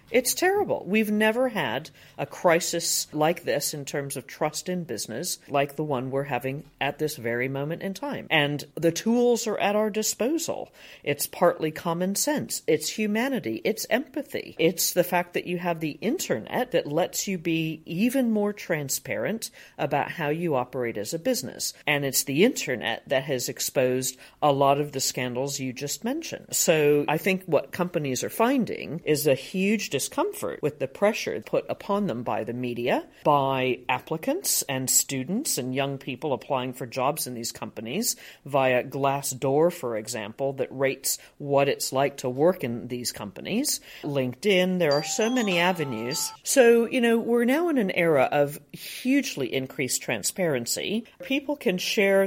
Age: 50-69